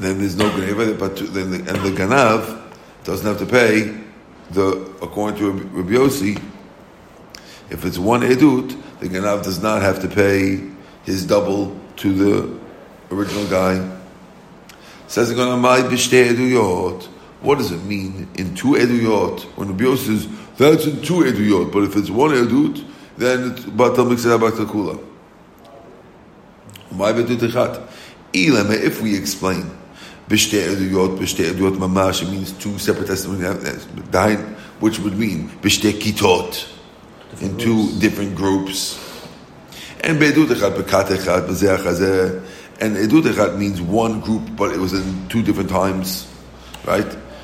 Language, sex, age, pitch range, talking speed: English, male, 50-69, 95-110 Hz, 135 wpm